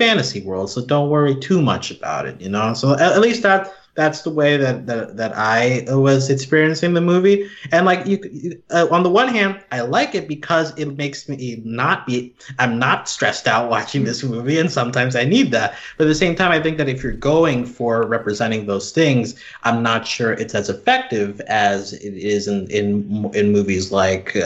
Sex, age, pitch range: male, 30-49, 120-185 Hz